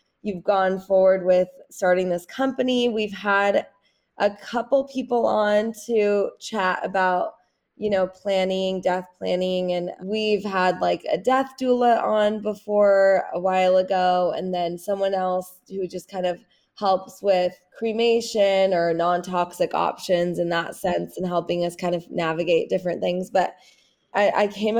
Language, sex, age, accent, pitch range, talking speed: English, female, 20-39, American, 185-210 Hz, 150 wpm